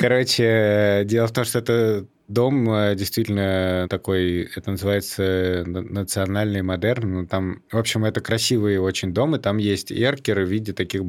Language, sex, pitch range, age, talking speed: Russian, male, 90-110 Hz, 20-39, 145 wpm